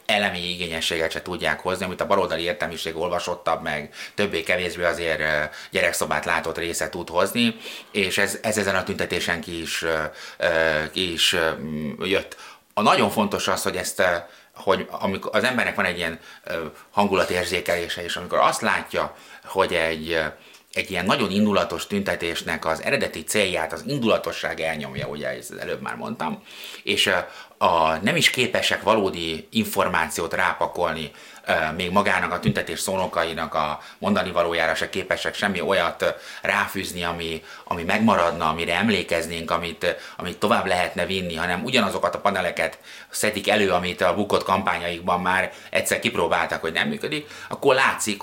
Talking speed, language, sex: 140 wpm, Hungarian, male